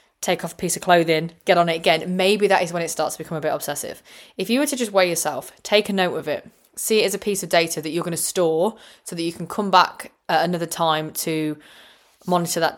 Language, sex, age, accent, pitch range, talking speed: English, female, 20-39, British, 160-190 Hz, 270 wpm